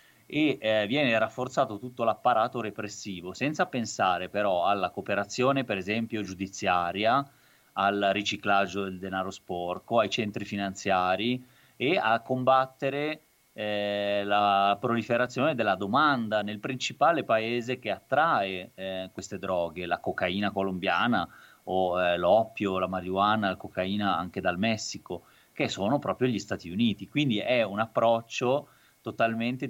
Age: 30-49